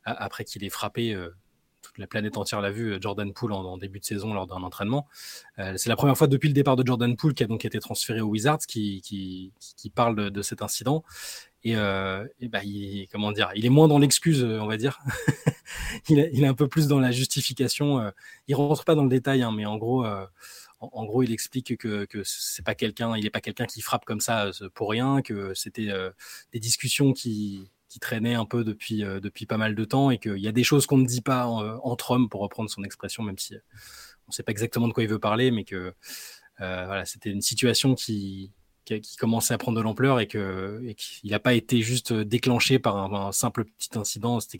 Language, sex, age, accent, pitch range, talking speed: French, male, 20-39, French, 105-125 Hz, 245 wpm